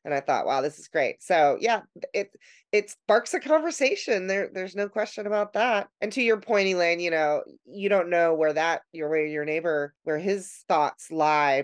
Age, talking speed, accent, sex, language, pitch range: 30-49, 200 wpm, American, female, English, 150-195 Hz